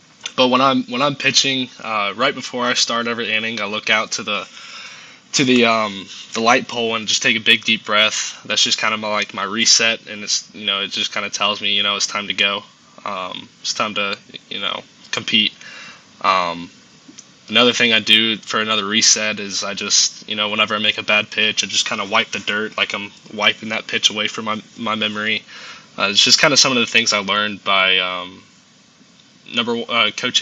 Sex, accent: male, American